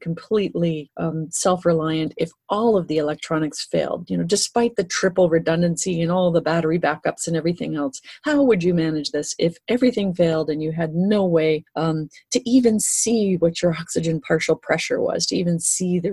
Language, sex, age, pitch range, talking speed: English, female, 30-49, 160-200 Hz, 185 wpm